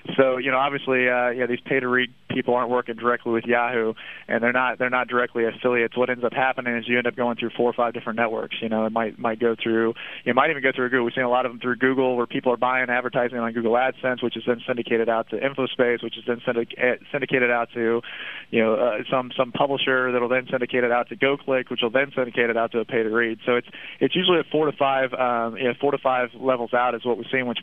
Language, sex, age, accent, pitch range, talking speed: English, male, 20-39, American, 120-130 Hz, 265 wpm